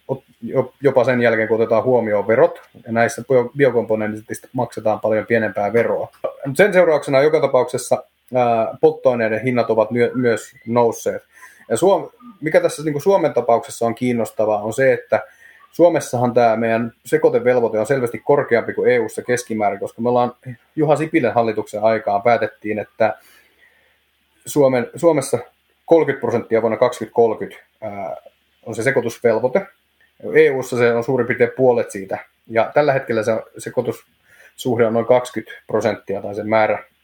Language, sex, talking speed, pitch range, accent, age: Finnish, male, 135 wpm, 110-135 Hz, native, 30-49